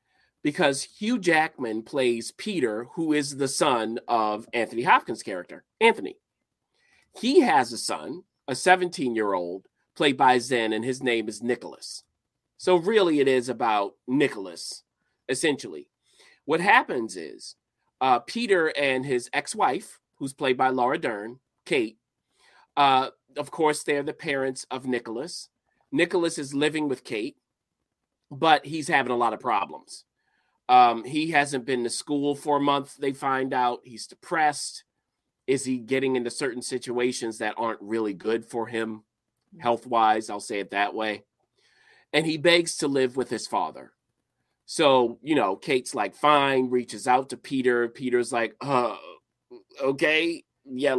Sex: male